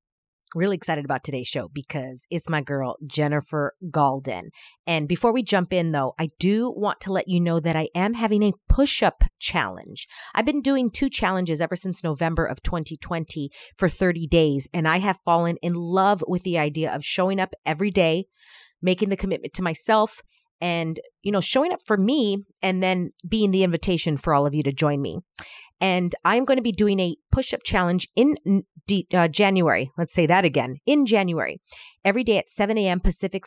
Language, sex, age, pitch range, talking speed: English, female, 40-59, 155-195 Hz, 190 wpm